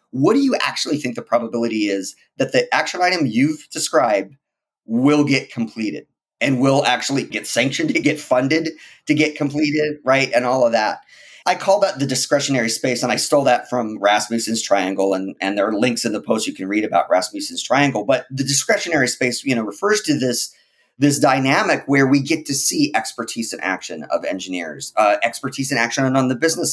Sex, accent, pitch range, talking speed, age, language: male, American, 115-145 Hz, 200 wpm, 30-49, English